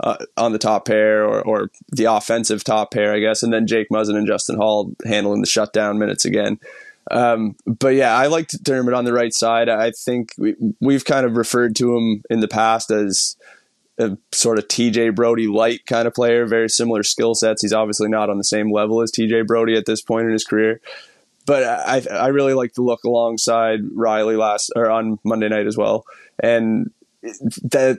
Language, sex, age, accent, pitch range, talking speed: English, male, 20-39, American, 110-120 Hz, 210 wpm